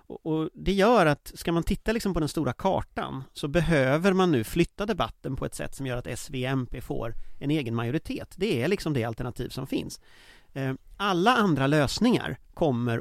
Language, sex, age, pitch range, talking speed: Swedish, male, 30-49, 120-160 Hz, 175 wpm